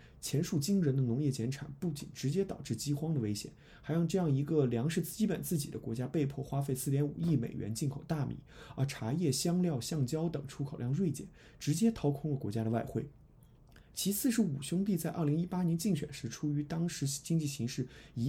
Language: Chinese